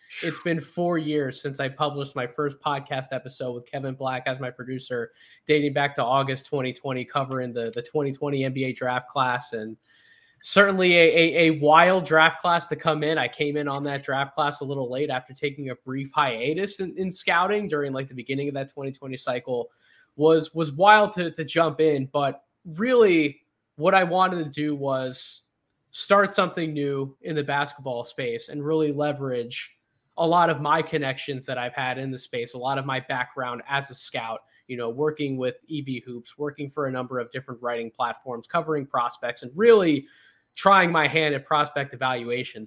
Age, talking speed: 20-39, 190 wpm